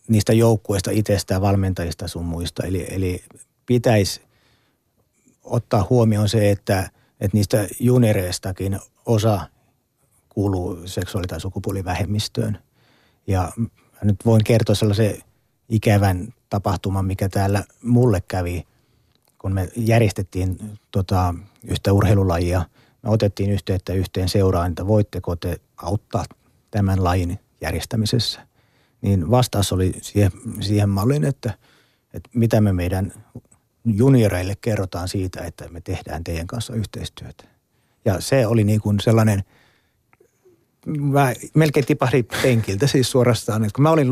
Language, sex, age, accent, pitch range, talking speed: Finnish, male, 30-49, native, 95-115 Hz, 110 wpm